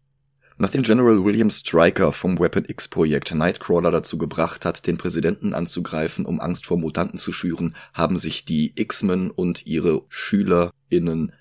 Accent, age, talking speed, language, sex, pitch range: German, 30-49, 140 wpm, German, male, 85-105 Hz